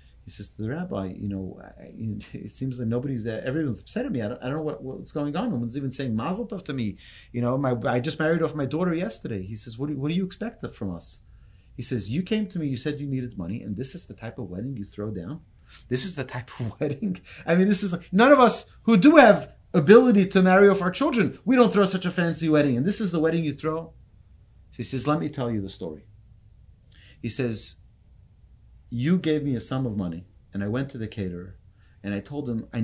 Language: English